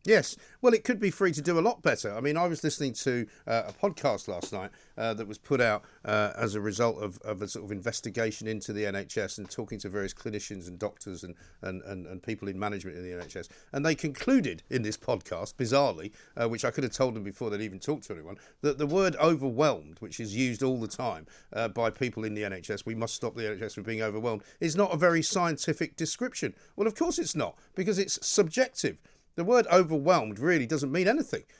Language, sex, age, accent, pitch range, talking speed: English, male, 50-69, British, 110-155 Hz, 230 wpm